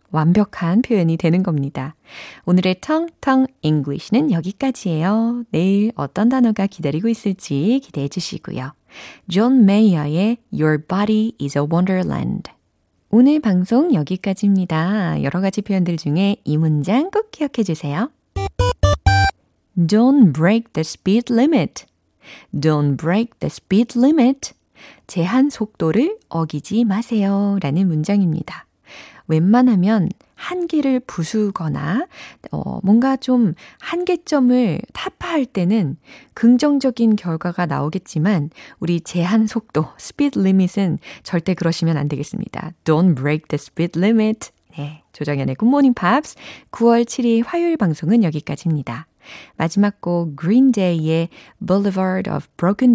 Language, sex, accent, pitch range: Korean, female, native, 165-235 Hz